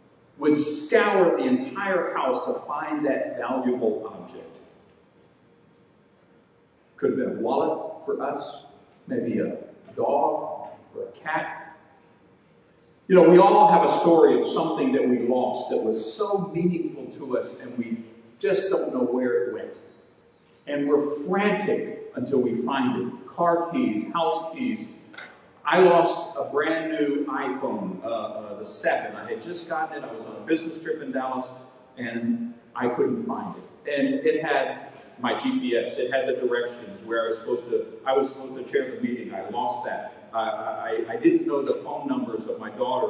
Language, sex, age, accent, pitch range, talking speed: English, male, 50-69, American, 130-215 Hz, 170 wpm